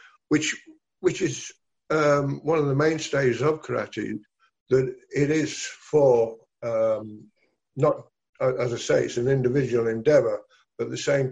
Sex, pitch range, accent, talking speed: male, 115-150 Hz, British, 150 wpm